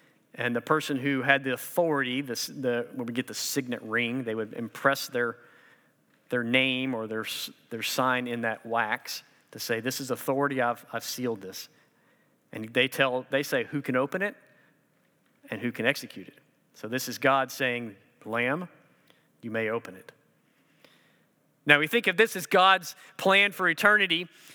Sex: male